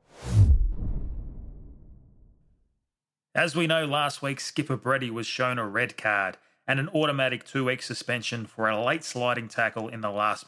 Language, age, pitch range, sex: English, 30-49, 105-135 Hz, male